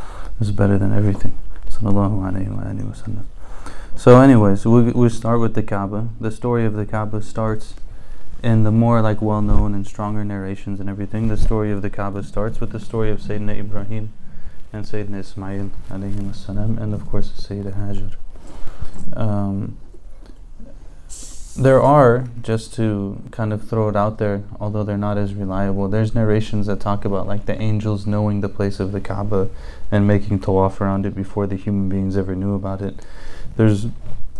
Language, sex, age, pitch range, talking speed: English, male, 20-39, 100-110 Hz, 175 wpm